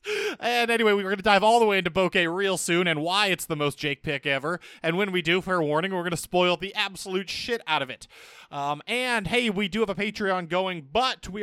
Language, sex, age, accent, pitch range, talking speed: English, male, 20-39, American, 145-190 Hz, 250 wpm